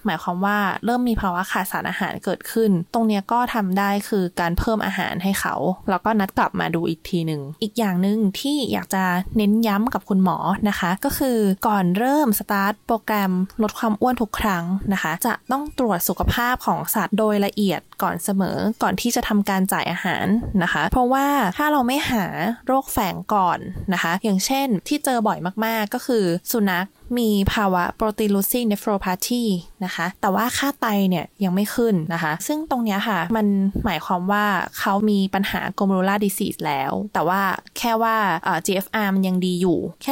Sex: female